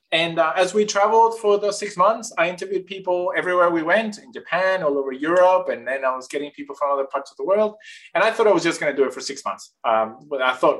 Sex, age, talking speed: male, 20-39, 270 wpm